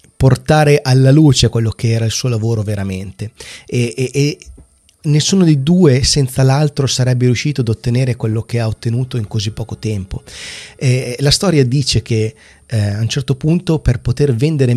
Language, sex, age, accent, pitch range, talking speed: Italian, male, 30-49, native, 115-145 Hz, 175 wpm